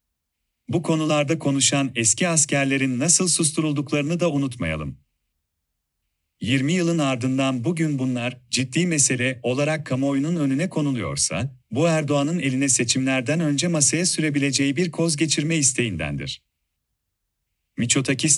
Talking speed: 105 wpm